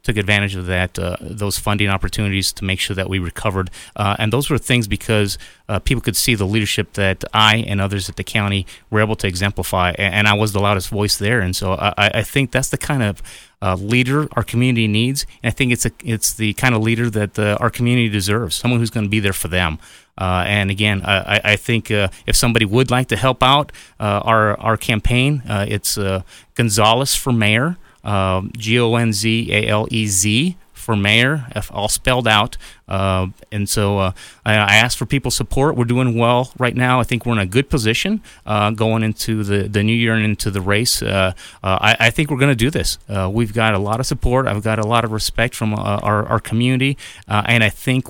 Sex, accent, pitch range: male, American, 100-120 Hz